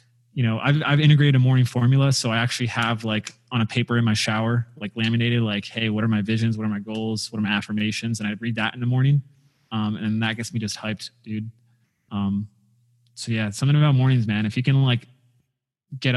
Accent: American